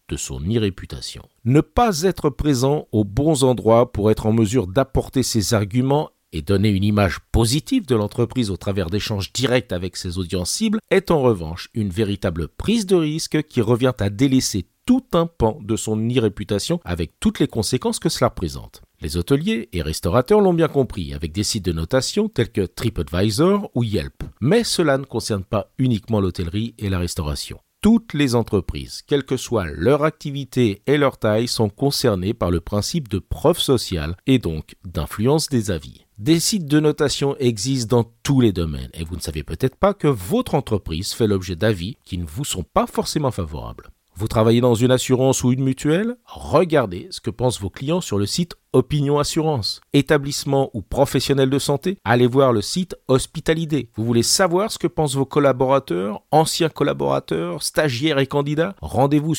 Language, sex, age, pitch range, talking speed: French, male, 50-69, 100-150 Hz, 180 wpm